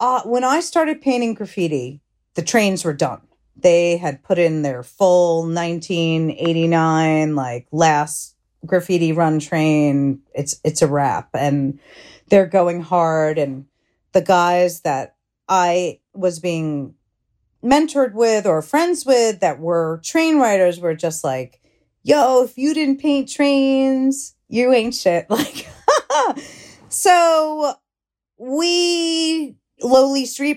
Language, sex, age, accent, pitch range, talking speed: English, female, 40-59, American, 160-225 Hz, 130 wpm